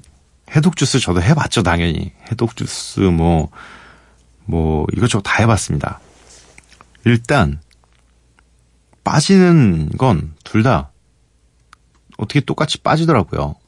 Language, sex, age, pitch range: Korean, male, 40-59, 80-130 Hz